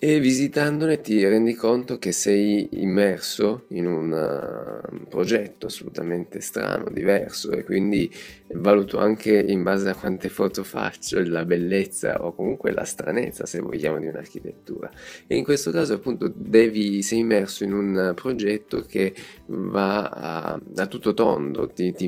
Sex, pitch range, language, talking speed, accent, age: male, 90-110 Hz, Italian, 150 wpm, native, 20-39